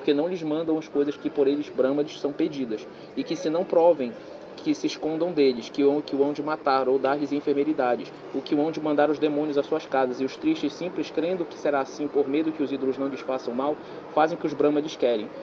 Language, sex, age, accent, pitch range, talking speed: Portuguese, male, 20-39, Brazilian, 140-160 Hz, 250 wpm